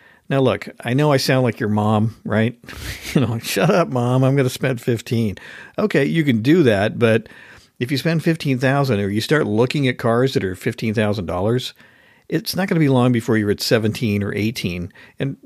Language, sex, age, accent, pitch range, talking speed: English, male, 50-69, American, 115-155 Hz, 200 wpm